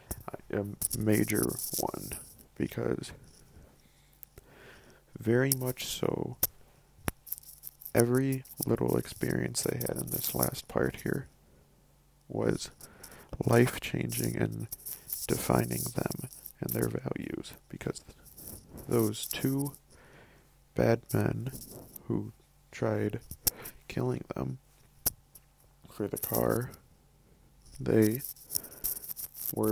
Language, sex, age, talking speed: English, male, 40-59, 80 wpm